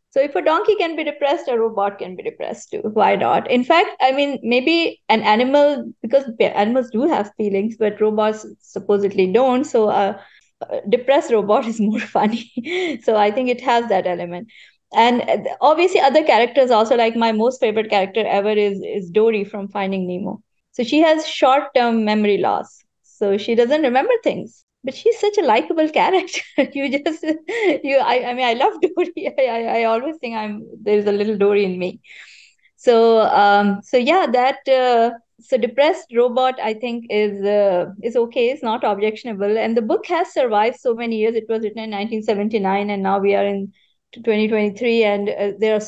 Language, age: English, 20-39